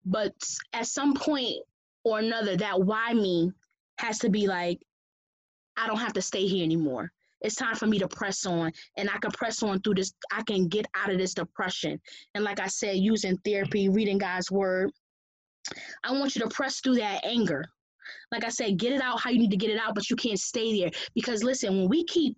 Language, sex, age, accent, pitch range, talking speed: English, female, 20-39, American, 195-240 Hz, 215 wpm